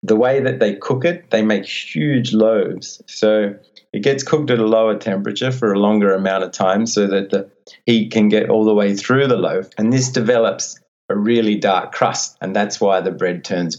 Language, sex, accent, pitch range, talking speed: English, male, Australian, 100-120 Hz, 215 wpm